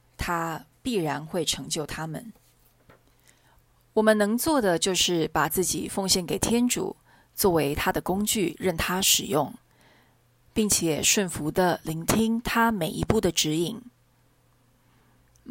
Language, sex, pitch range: Chinese, female, 150-200 Hz